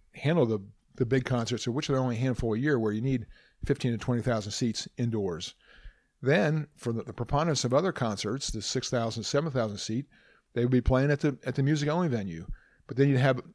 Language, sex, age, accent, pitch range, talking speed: English, male, 50-69, American, 120-140 Hz, 210 wpm